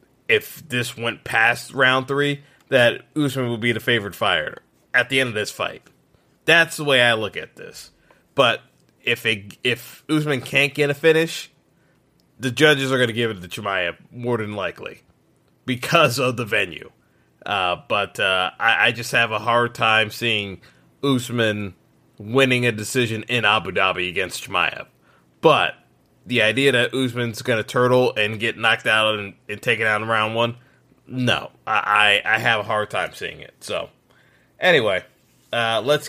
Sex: male